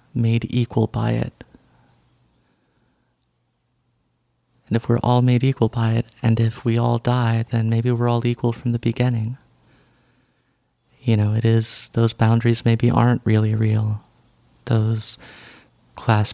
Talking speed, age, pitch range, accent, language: 135 wpm, 30-49, 115-120 Hz, American, English